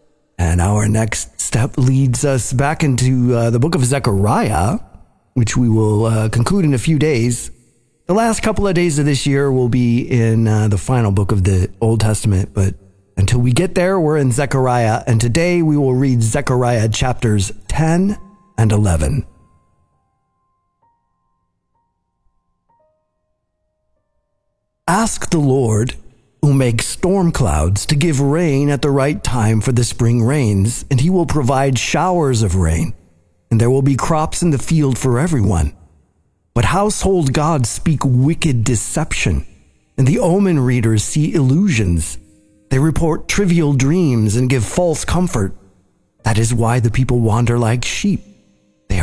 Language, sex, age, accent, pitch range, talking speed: English, male, 40-59, American, 105-150 Hz, 150 wpm